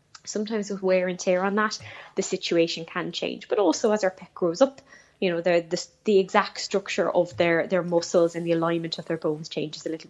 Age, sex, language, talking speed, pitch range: 10-29, female, English, 220 wpm, 165-195 Hz